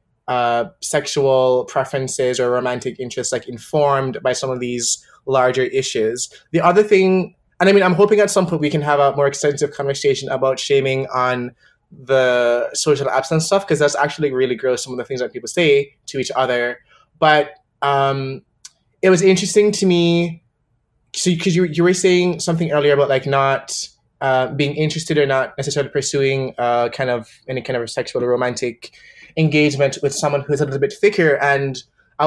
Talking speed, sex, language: 185 wpm, male, English